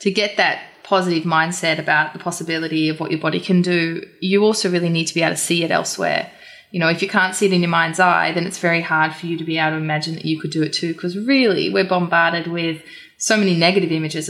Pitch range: 160-185 Hz